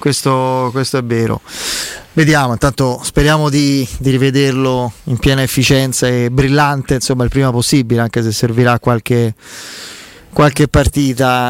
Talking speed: 130 wpm